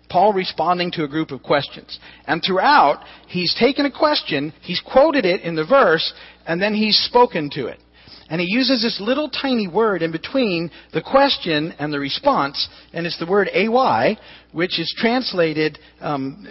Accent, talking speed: American, 175 wpm